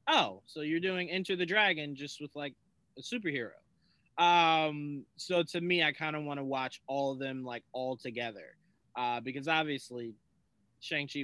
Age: 20-39